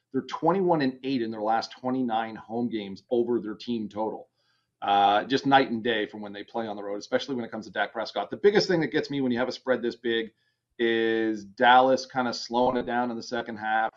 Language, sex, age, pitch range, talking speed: English, male, 30-49, 115-140 Hz, 245 wpm